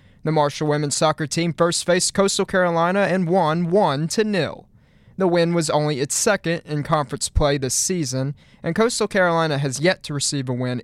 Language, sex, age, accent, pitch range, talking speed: English, male, 20-39, American, 145-175 Hz, 175 wpm